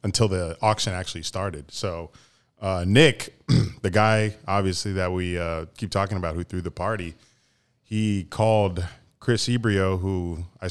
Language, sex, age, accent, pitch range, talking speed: English, male, 20-39, American, 85-110 Hz, 150 wpm